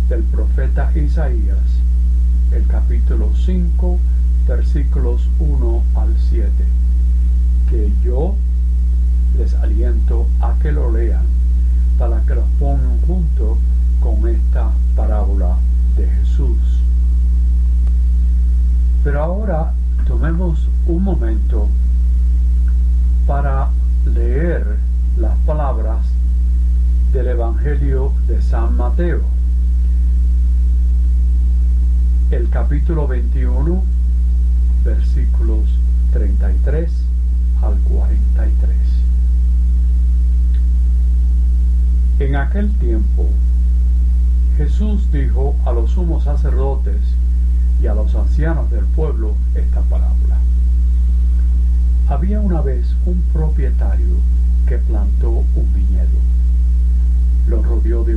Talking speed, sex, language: 80 wpm, male, Spanish